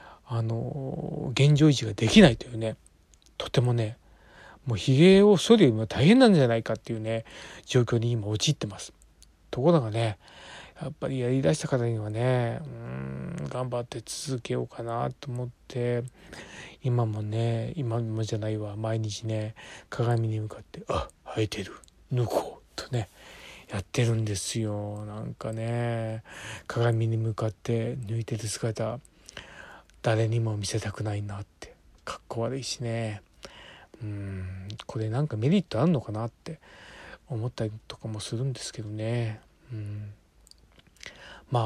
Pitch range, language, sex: 110-145 Hz, Japanese, male